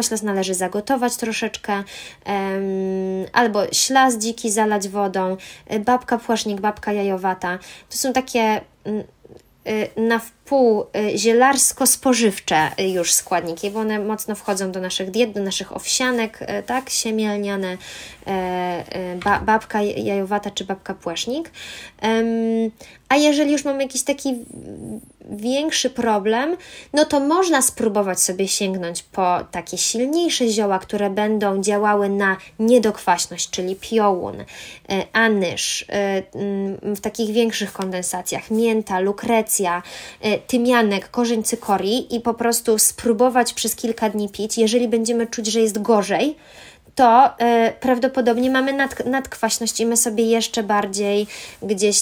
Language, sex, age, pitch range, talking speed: Polish, female, 20-39, 195-240 Hz, 115 wpm